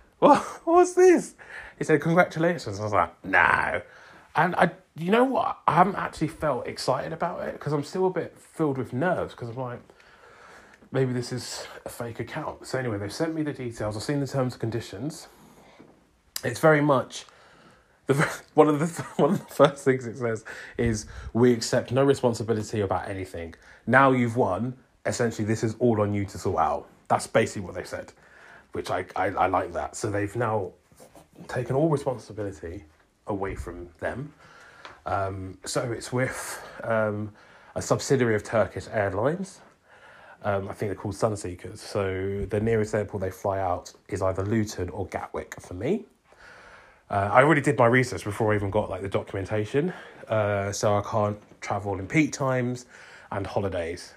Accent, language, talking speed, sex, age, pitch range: British, English, 175 wpm, male, 30-49, 100-135 Hz